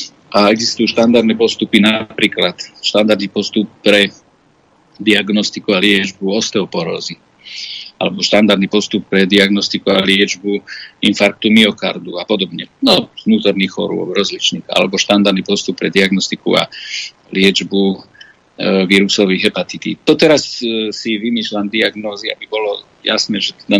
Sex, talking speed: male, 120 wpm